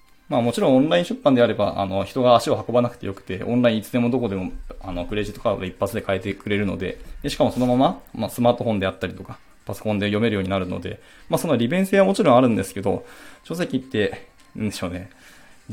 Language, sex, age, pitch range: Japanese, male, 20-39, 95-125 Hz